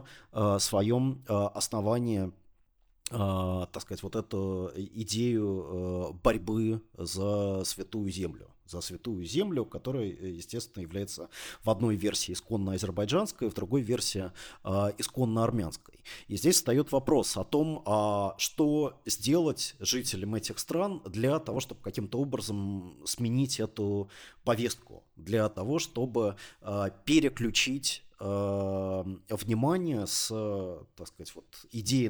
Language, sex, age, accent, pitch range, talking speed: Russian, male, 30-49, native, 100-125 Hz, 95 wpm